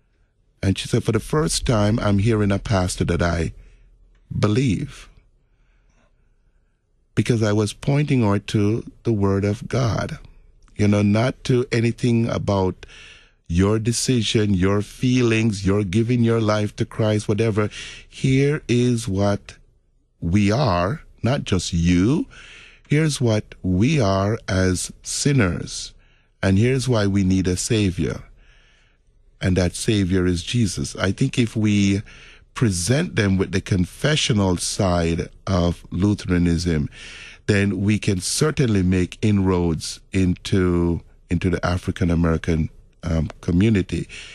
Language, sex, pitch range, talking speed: English, male, 90-115 Hz, 125 wpm